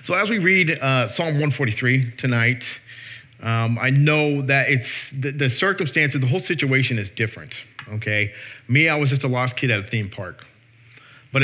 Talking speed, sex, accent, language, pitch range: 180 wpm, male, American, English, 115-140 Hz